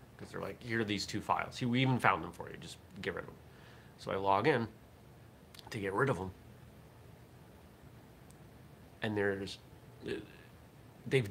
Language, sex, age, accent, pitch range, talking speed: English, male, 30-49, American, 100-125 Hz, 165 wpm